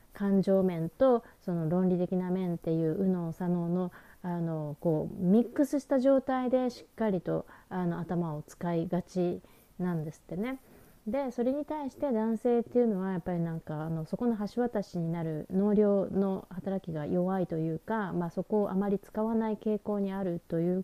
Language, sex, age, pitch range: Japanese, female, 30-49, 170-230 Hz